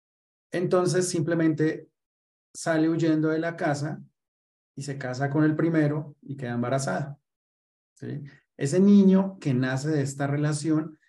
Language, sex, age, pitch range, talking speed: Spanish, male, 30-49, 125-150 Hz, 130 wpm